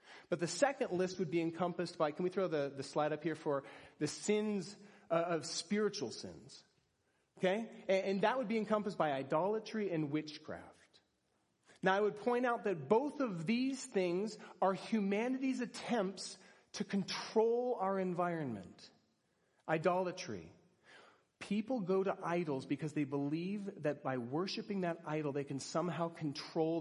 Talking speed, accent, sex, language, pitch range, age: 150 wpm, American, male, English, 150-200 Hz, 40-59